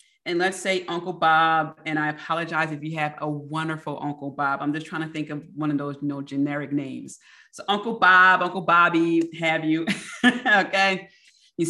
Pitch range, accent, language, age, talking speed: 160-195 Hz, American, English, 30-49, 190 wpm